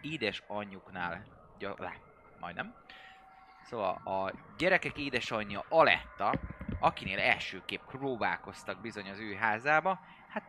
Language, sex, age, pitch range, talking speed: Hungarian, male, 20-39, 95-150 Hz, 85 wpm